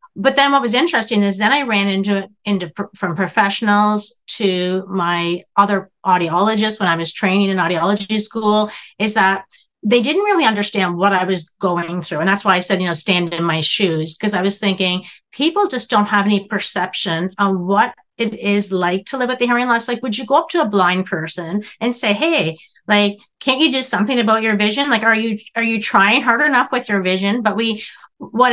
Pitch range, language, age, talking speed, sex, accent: 185-225 Hz, English, 30-49, 215 wpm, female, American